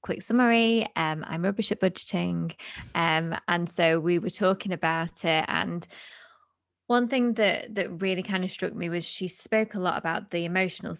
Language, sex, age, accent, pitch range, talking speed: English, female, 20-39, British, 165-210 Hz, 180 wpm